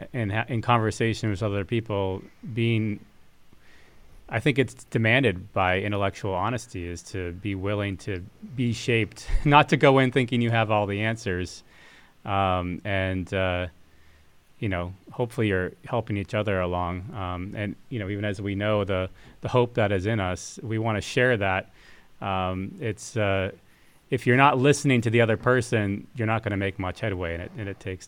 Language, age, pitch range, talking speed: English, 30-49, 100-125 Hz, 180 wpm